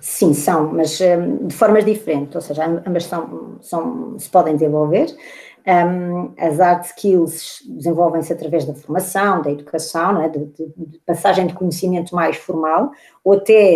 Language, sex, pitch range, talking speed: Portuguese, female, 170-195 Hz, 155 wpm